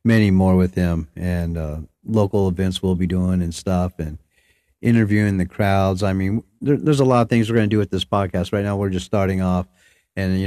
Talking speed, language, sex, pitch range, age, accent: 225 wpm, English, male, 95-110 Hz, 40-59, American